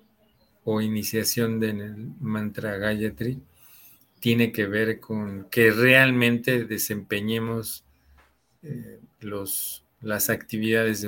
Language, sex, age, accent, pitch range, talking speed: Spanish, male, 40-59, Mexican, 105-125 Hz, 95 wpm